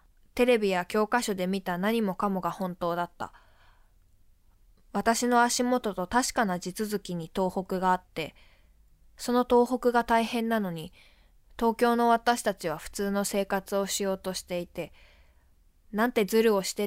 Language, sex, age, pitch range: Japanese, female, 20-39, 145-225 Hz